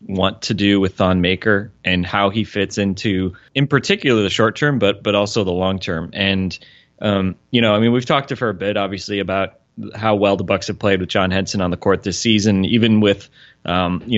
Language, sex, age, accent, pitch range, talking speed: English, male, 20-39, American, 90-110 Hz, 230 wpm